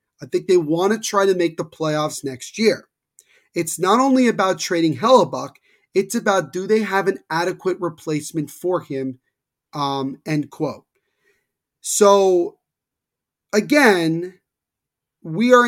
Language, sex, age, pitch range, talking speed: English, male, 30-49, 155-195 Hz, 135 wpm